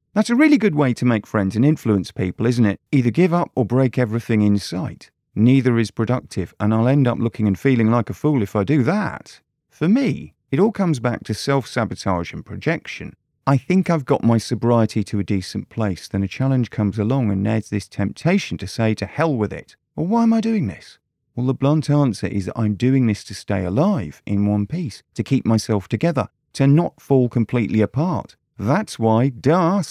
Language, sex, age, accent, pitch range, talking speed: English, male, 40-59, British, 105-140 Hz, 215 wpm